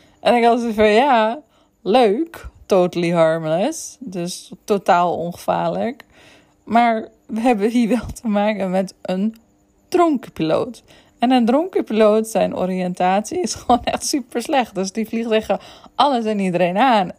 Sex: female